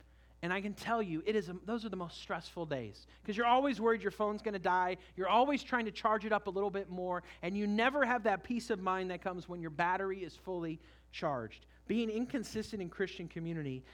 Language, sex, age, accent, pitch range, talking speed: English, male, 40-59, American, 145-230 Hz, 230 wpm